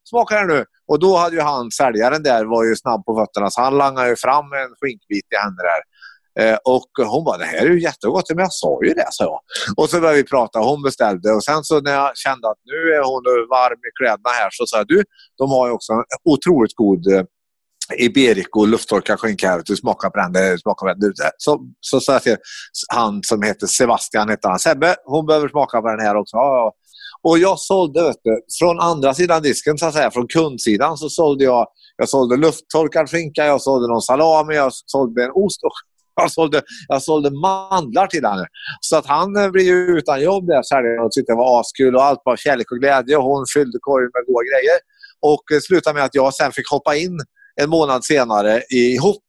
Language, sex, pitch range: Swedish, male, 120-165 Hz